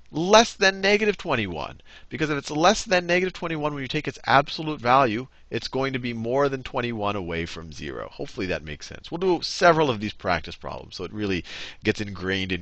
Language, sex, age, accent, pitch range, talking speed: English, male, 40-59, American, 95-145 Hz, 210 wpm